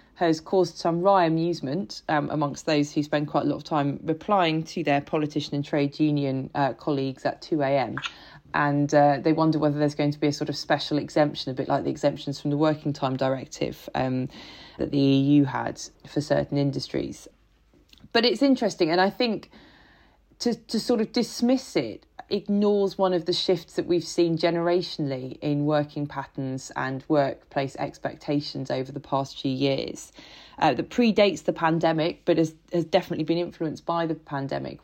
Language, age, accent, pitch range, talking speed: English, 20-39, British, 145-175 Hz, 180 wpm